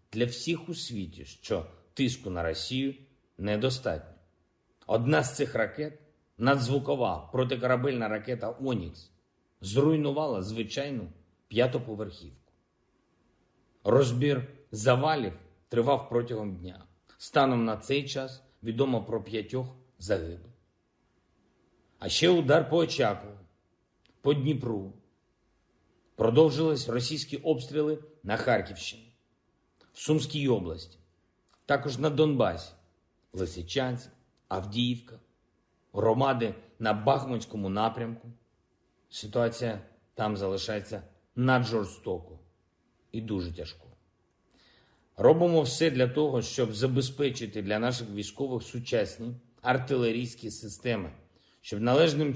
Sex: male